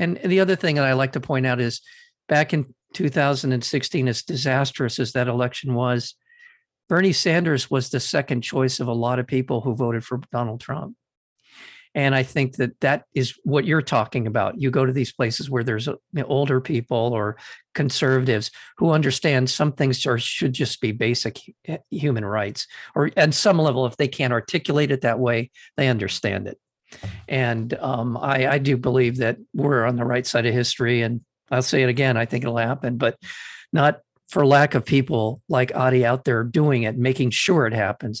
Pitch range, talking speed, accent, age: 120-145 Hz, 190 wpm, American, 50-69